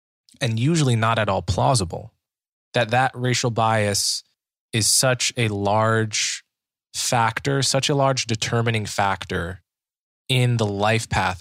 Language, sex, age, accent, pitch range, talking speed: English, male, 20-39, American, 100-125 Hz, 125 wpm